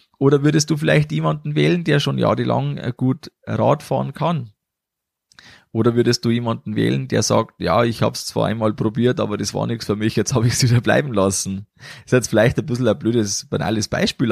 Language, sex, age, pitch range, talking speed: German, male, 20-39, 105-145 Hz, 205 wpm